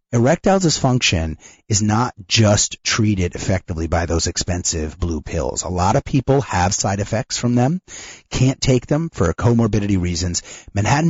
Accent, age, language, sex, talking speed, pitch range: American, 30-49, English, male, 150 wpm, 90-125 Hz